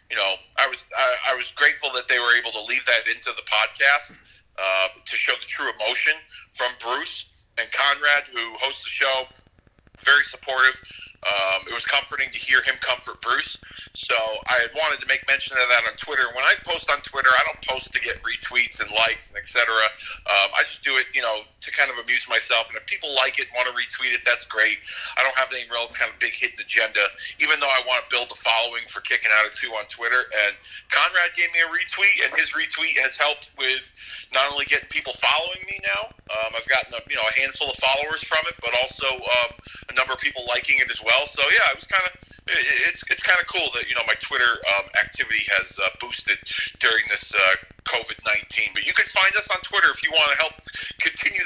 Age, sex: 40-59, male